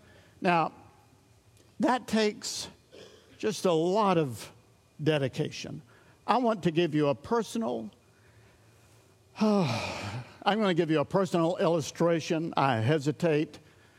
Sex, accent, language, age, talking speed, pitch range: male, American, English, 60-79, 105 wpm, 125-165 Hz